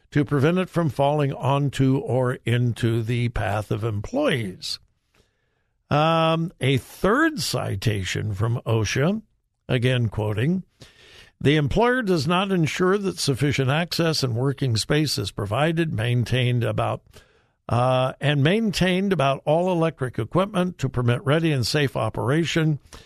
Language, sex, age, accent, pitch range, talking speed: English, male, 60-79, American, 115-155 Hz, 125 wpm